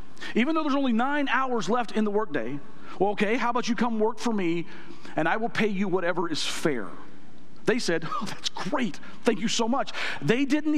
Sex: male